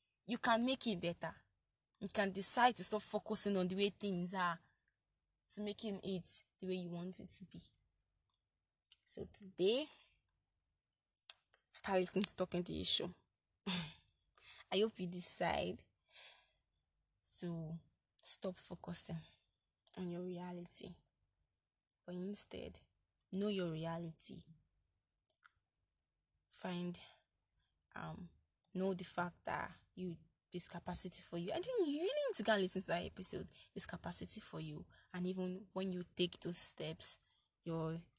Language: English